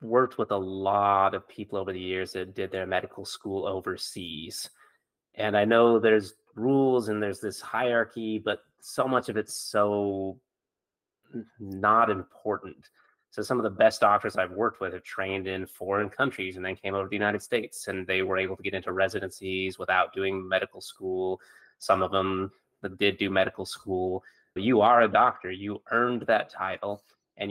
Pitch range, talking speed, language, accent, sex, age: 95-105 Hz, 180 wpm, English, American, male, 30-49